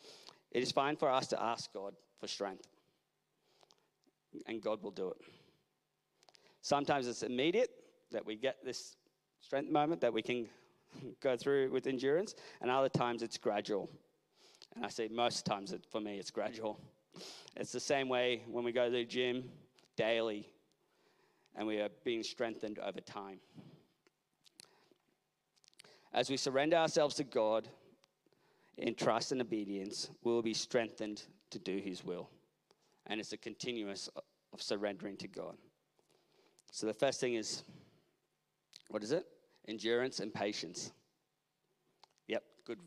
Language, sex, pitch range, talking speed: English, male, 115-145 Hz, 140 wpm